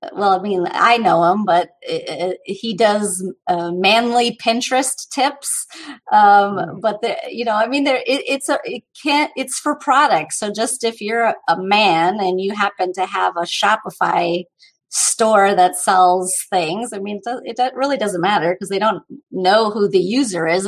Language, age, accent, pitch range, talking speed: English, 30-49, American, 180-235 Hz, 185 wpm